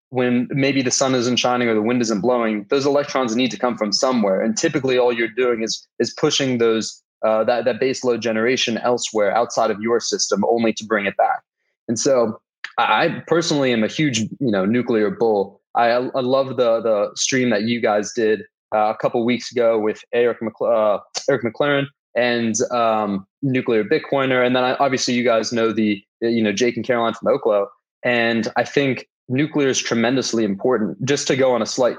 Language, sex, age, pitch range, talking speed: English, male, 20-39, 110-130 Hz, 205 wpm